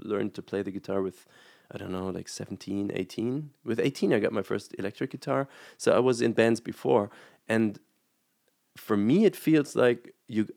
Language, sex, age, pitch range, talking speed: Dutch, male, 30-49, 100-135 Hz, 185 wpm